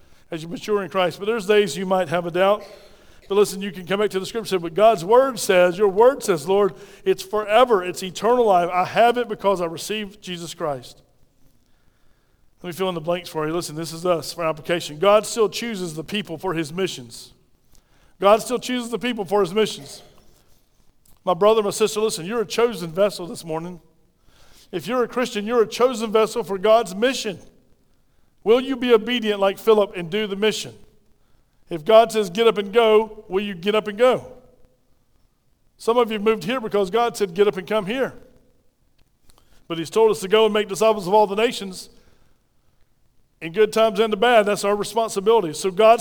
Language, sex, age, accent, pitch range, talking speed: English, male, 50-69, American, 185-225 Hz, 205 wpm